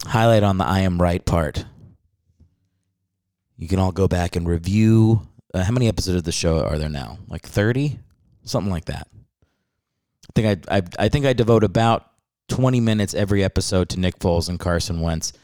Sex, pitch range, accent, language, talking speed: male, 85-105 Hz, American, English, 185 wpm